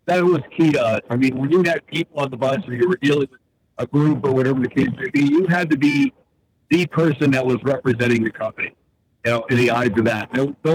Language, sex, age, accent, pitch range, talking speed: English, male, 60-79, American, 125-160 Hz, 255 wpm